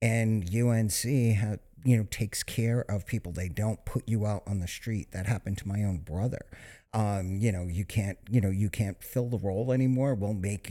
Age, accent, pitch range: 50-69, American, 100-125 Hz